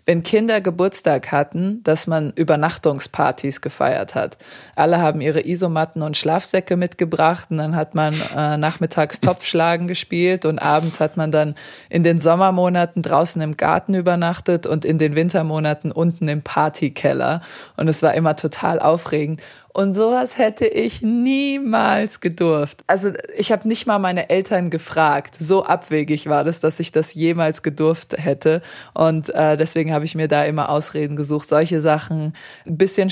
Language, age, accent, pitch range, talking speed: German, 20-39, German, 150-175 Hz, 160 wpm